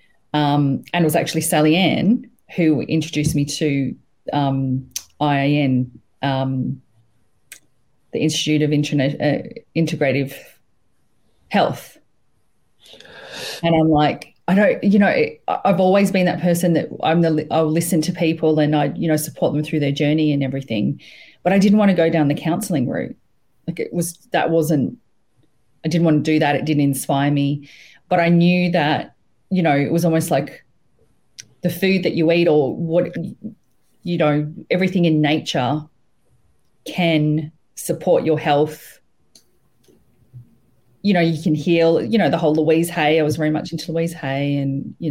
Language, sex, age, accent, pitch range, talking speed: English, female, 30-49, Australian, 140-170 Hz, 165 wpm